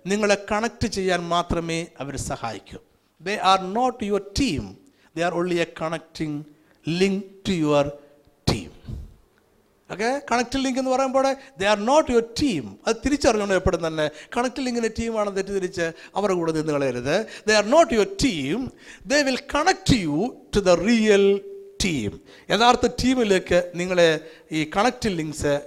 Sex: male